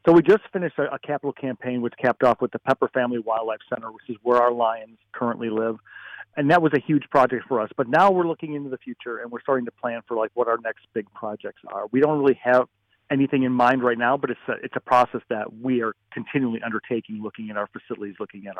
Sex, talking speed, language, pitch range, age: male, 245 wpm, English, 115-135 Hz, 40-59